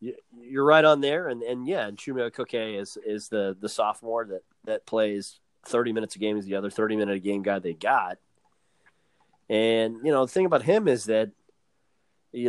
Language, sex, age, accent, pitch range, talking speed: English, male, 30-49, American, 100-130 Hz, 195 wpm